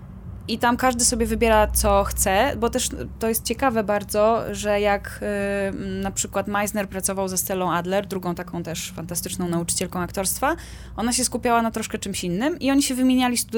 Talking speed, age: 170 wpm, 20-39